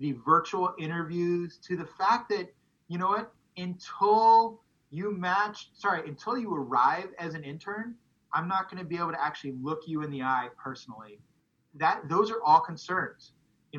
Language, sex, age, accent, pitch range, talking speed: English, male, 30-49, American, 150-180 Hz, 170 wpm